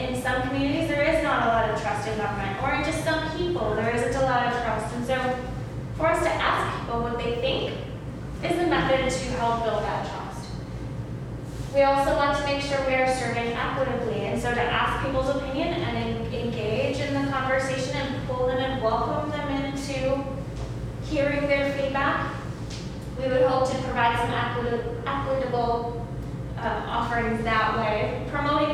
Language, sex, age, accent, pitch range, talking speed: English, female, 10-29, American, 210-300 Hz, 175 wpm